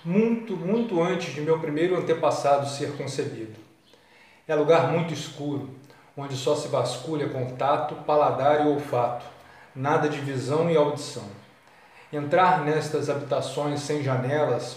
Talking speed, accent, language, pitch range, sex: 125 wpm, Brazilian, Portuguese, 135-160 Hz, male